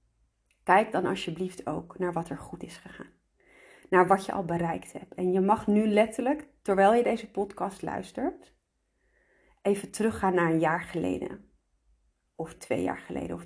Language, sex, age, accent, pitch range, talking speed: Dutch, female, 30-49, Dutch, 165-210 Hz, 165 wpm